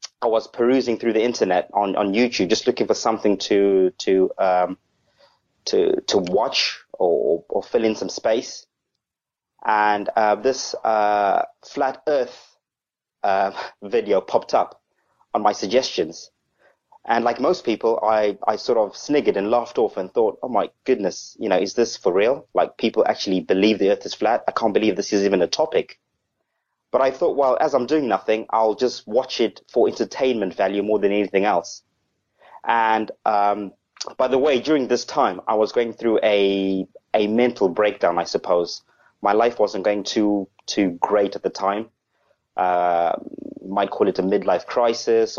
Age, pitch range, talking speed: 30-49, 100-125 Hz, 175 wpm